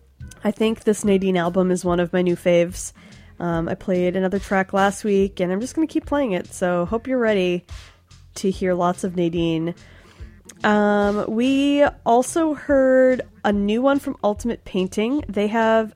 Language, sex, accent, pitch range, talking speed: English, female, American, 180-230 Hz, 175 wpm